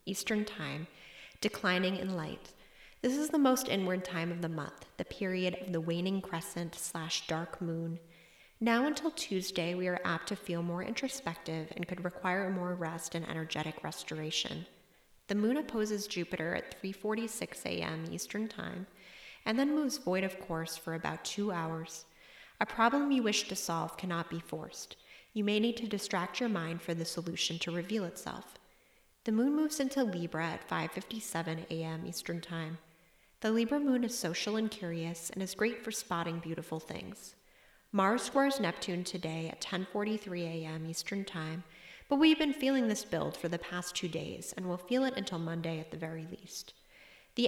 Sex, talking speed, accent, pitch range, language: female, 175 wpm, American, 165-215 Hz, English